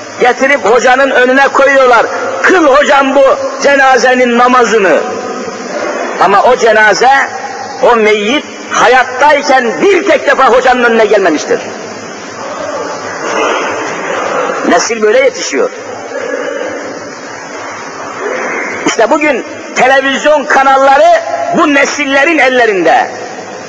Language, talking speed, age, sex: Turkish, 80 wpm, 50-69, male